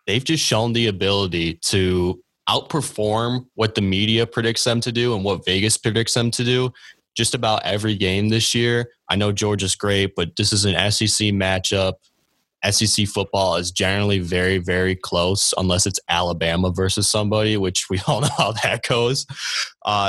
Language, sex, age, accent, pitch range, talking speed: English, male, 20-39, American, 90-110 Hz, 170 wpm